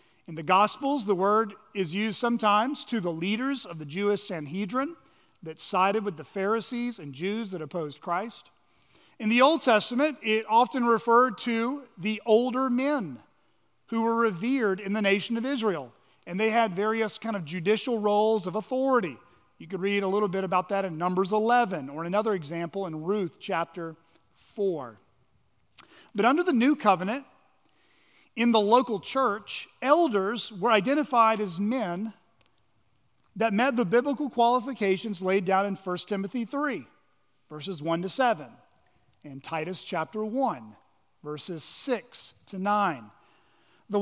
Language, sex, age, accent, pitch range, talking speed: English, male, 40-59, American, 185-235 Hz, 150 wpm